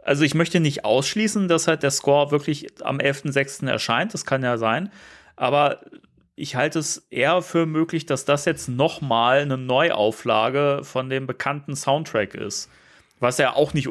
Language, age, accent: German, 30-49, German